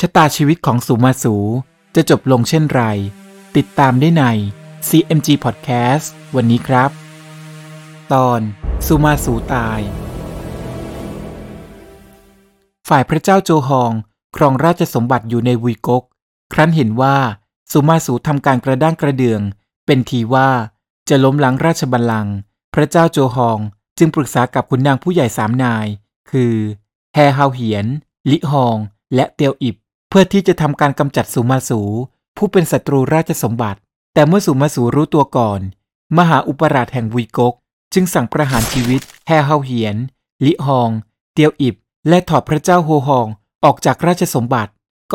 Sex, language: male, Thai